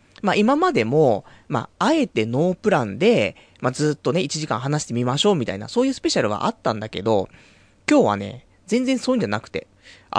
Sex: male